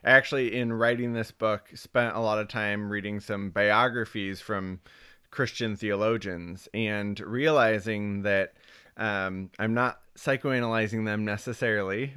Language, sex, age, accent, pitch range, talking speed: English, male, 20-39, American, 105-120 Hz, 125 wpm